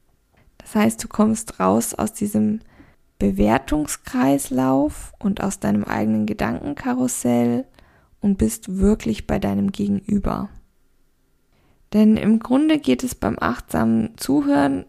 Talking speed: 110 wpm